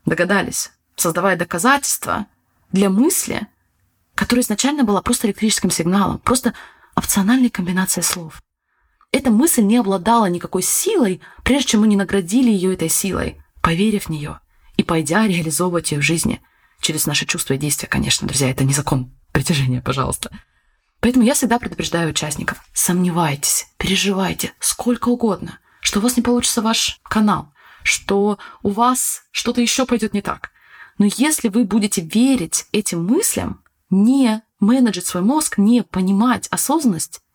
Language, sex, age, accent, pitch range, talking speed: Russian, female, 20-39, native, 170-240 Hz, 140 wpm